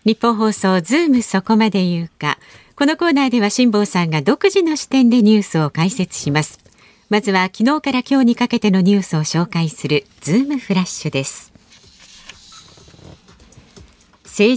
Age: 50-69